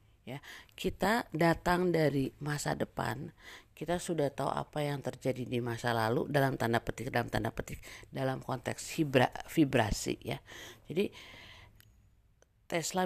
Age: 50-69